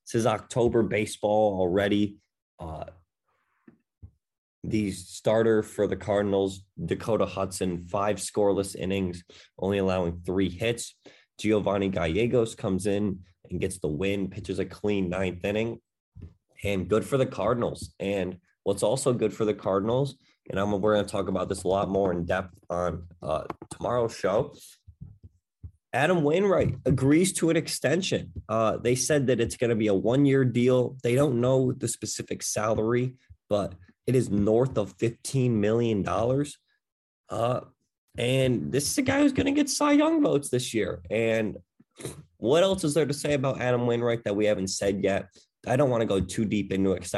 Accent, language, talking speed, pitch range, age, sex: American, English, 165 wpm, 95-120 Hz, 20-39, male